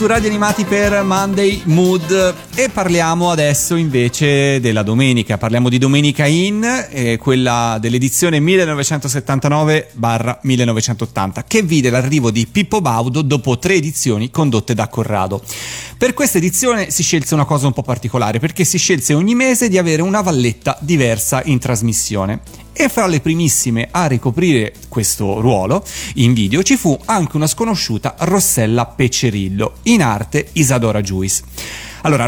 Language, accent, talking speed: Italian, native, 140 wpm